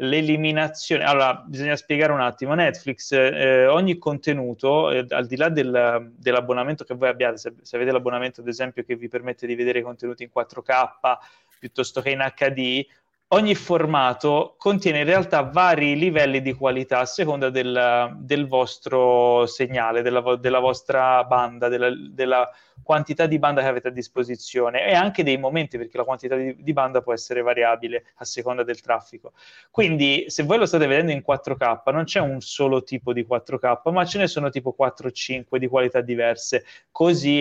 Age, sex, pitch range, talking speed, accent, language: 20-39, male, 125-150 Hz, 170 wpm, native, Italian